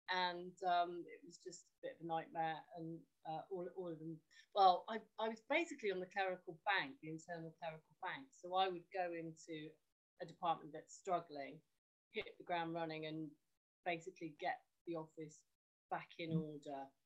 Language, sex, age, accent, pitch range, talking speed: English, female, 30-49, British, 160-185 Hz, 175 wpm